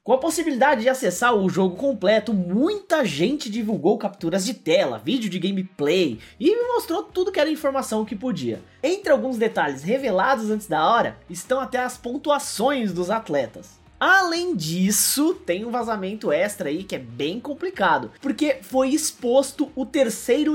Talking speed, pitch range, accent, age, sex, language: 160 wpm, 195-290 Hz, Brazilian, 20-39, male, Portuguese